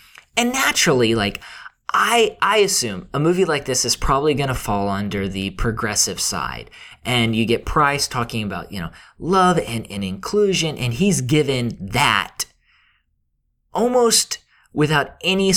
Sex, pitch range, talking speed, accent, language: male, 105-160 Hz, 145 wpm, American, English